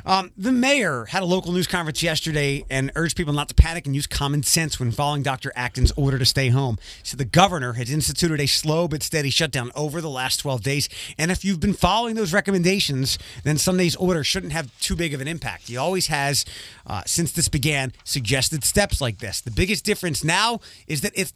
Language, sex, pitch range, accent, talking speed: English, male, 130-170 Hz, American, 215 wpm